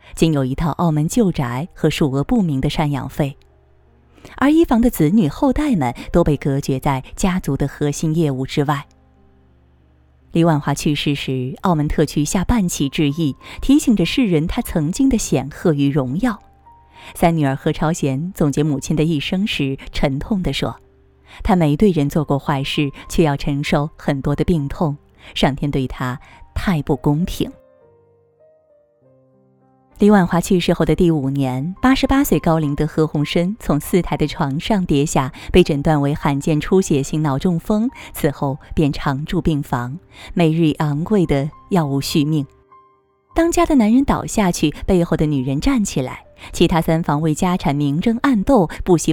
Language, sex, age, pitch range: Chinese, female, 20-39, 140-180 Hz